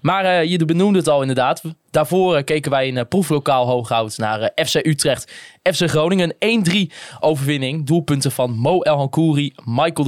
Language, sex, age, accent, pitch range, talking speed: Dutch, male, 20-39, Dutch, 125-160 Hz, 175 wpm